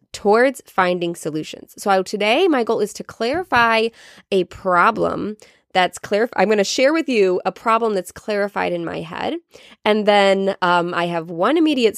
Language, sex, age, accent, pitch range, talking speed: English, female, 20-39, American, 180-255 Hz, 165 wpm